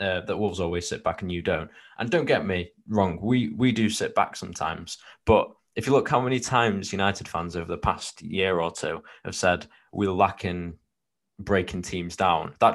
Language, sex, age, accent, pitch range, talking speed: English, male, 20-39, British, 90-105 Hz, 200 wpm